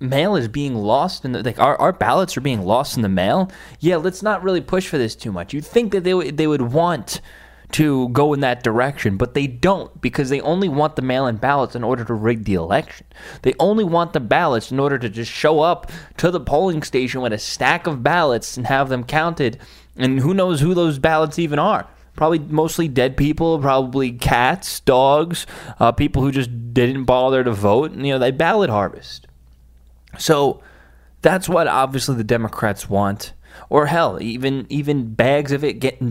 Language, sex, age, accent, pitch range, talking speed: English, male, 20-39, American, 110-145 Hz, 205 wpm